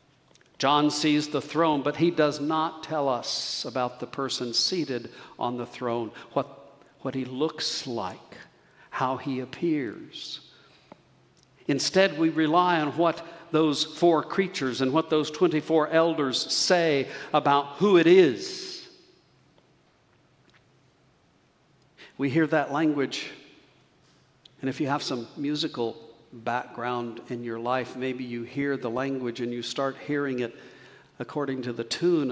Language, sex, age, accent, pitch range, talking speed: English, male, 60-79, American, 120-155 Hz, 130 wpm